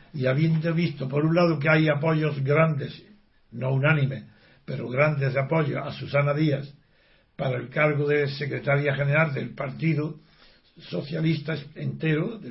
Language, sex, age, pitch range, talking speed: Spanish, male, 60-79, 145-170 Hz, 140 wpm